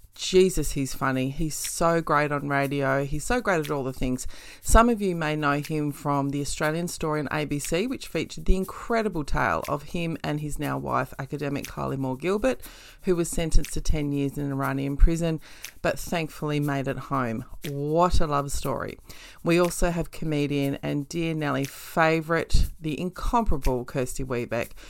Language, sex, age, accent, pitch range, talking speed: English, female, 30-49, Australian, 140-180 Hz, 175 wpm